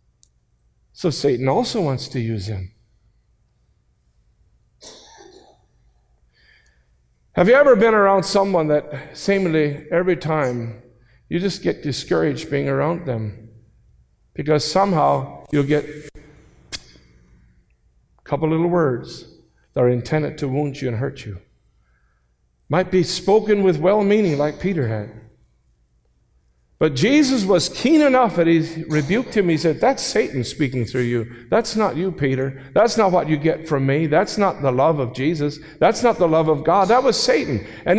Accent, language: American, English